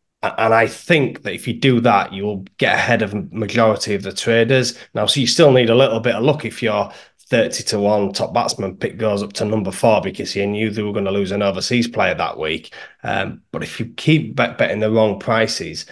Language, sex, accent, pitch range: English, male, British, 105-120 Hz